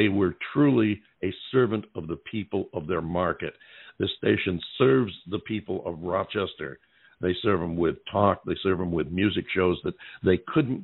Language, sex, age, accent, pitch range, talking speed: English, male, 60-79, American, 95-115 Hz, 175 wpm